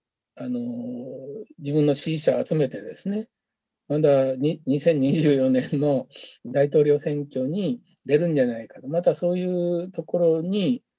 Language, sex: Japanese, male